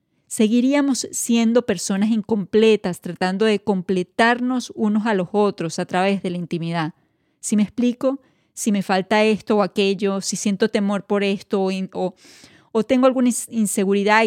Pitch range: 185-220 Hz